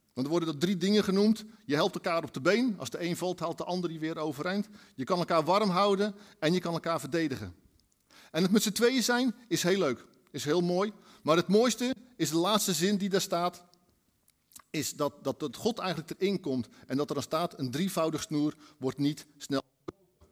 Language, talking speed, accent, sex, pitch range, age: Dutch, 215 wpm, Dutch, male, 150-220 Hz, 50-69